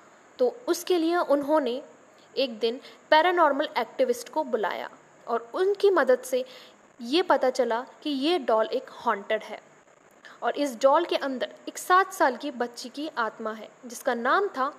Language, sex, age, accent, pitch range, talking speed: Hindi, female, 10-29, native, 245-335 Hz, 160 wpm